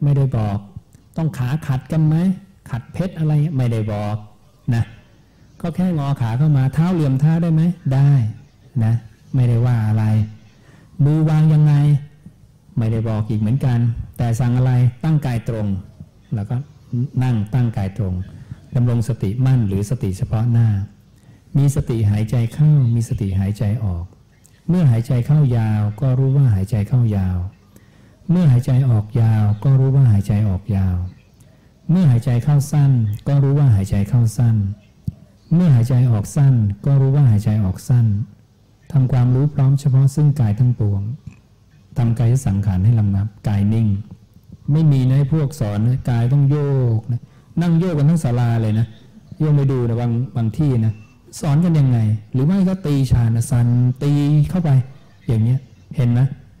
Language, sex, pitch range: English, male, 110-140 Hz